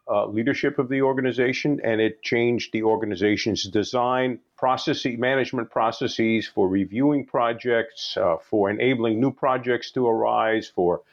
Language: English